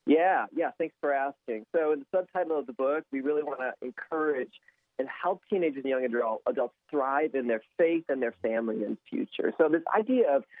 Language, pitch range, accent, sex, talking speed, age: English, 120-160 Hz, American, male, 205 wpm, 40-59